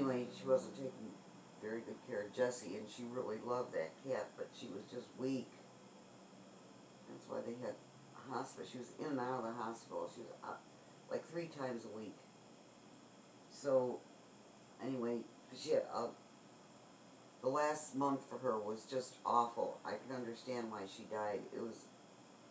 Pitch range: 115-130 Hz